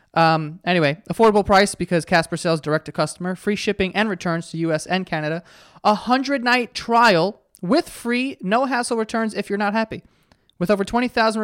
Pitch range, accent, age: 170-220 Hz, American, 20-39